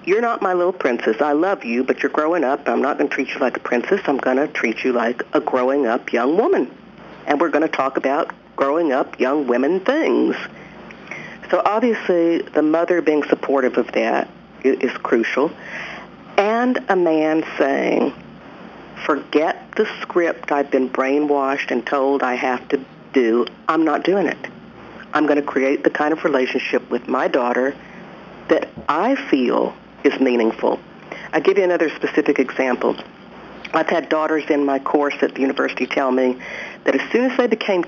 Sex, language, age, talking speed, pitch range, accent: female, English, 50-69, 175 wpm, 135-180 Hz, American